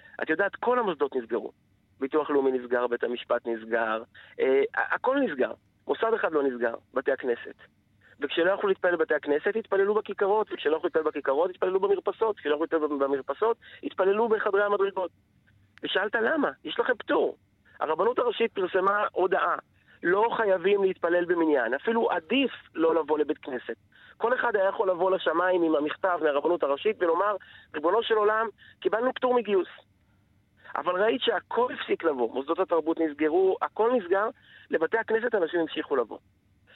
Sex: male